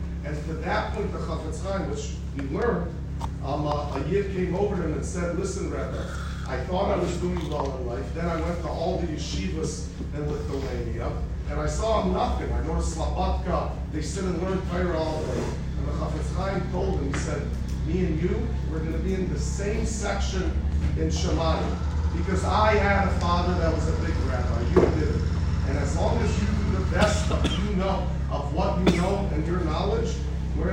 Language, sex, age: English, male, 40-59